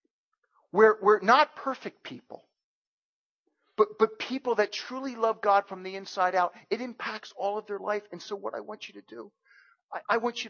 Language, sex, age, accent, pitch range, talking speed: English, male, 40-59, American, 170-260 Hz, 195 wpm